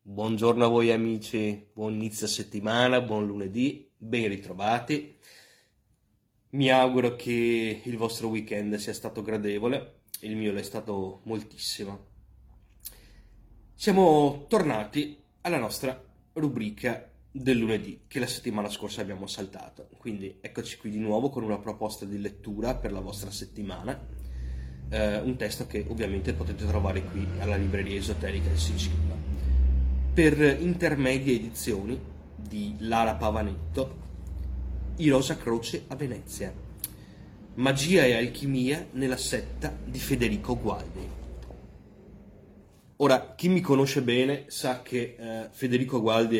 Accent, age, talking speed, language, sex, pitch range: native, 30-49, 120 wpm, Italian, male, 100-120 Hz